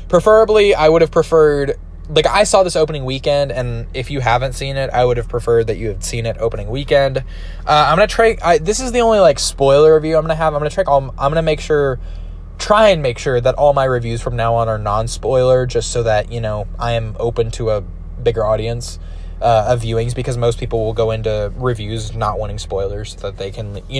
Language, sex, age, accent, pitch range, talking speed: English, male, 10-29, American, 110-145 Hz, 235 wpm